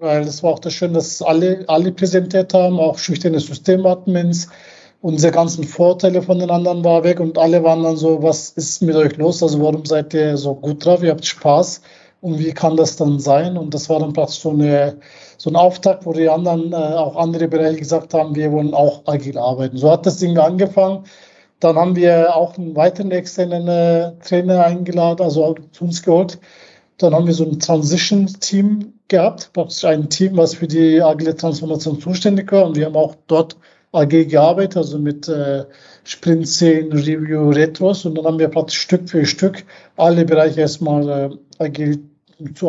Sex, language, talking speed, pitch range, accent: male, German, 190 wpm, 155-175 Hz, German